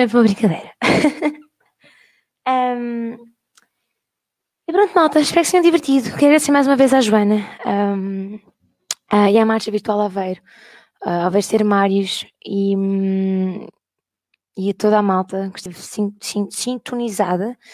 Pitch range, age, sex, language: 190-225 Hz, 20-39, female, Portuguese